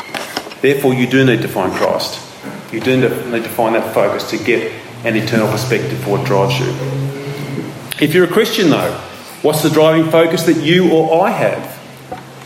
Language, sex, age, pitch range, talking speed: English, male, 30-49, 130-165 Hz, 180 wpm